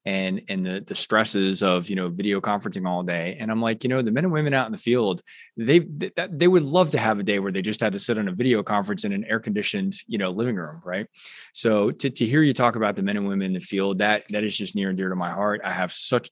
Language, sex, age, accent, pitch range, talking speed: English, male, 20-39, American, 95-115 Hz, 295 wpm